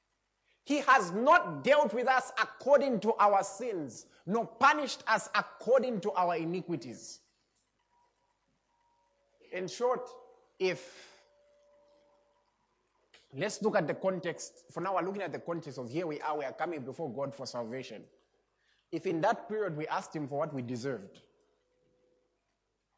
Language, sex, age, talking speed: English, male, 30-49, 140 wpm